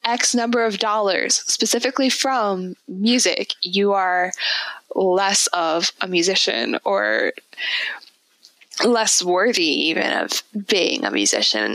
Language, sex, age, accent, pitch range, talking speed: English, female, 10-29, American, 195-240 Hz, 105 wpm